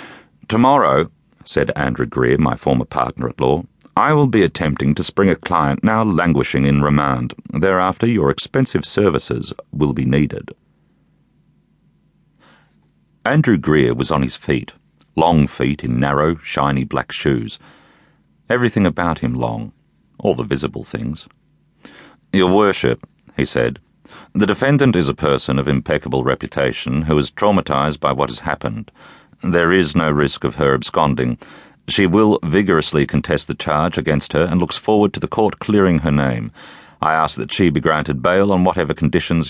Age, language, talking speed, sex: 40-59, English, 150 wpm, male